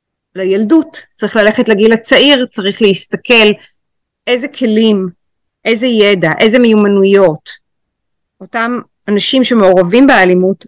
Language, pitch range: Hebrew, 180-230 Hz